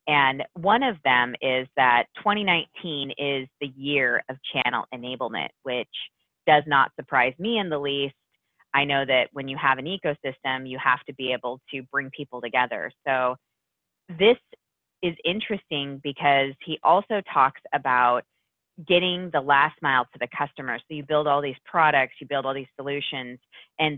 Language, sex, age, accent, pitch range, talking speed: English, female, 20-39, American, 135-165 Hz, 165 wpm